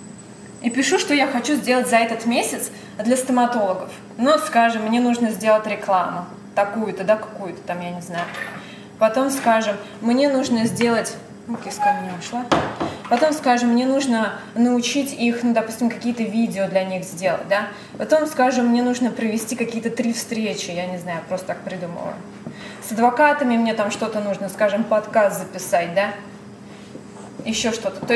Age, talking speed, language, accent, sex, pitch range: 20-39, 160 wpm, Russian, native, female, 195-245 Hz